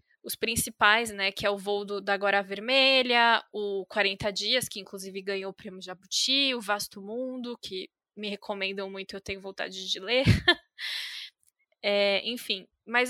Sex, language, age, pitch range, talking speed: female, Portuguese, 10-29, 200-250 Hz, 160 wpm